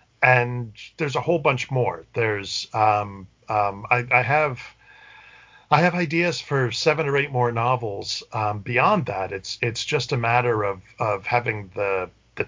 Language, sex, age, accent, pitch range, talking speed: English, male, 40-59, American, 110-135 Hz, 165 wpm